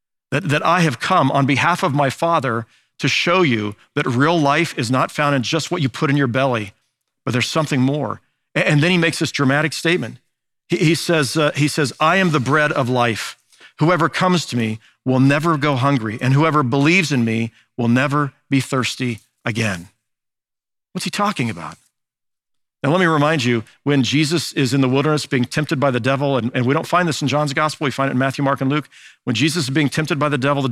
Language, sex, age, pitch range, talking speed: English, male, 50-69, 125-155 Hz, 215 wpm